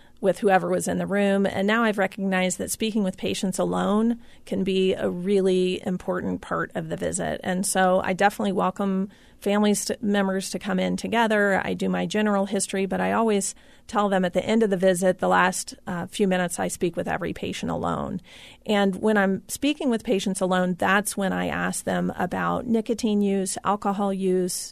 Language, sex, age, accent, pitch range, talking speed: English, female, 40-59, American, 185-205 Hz, 190 wpm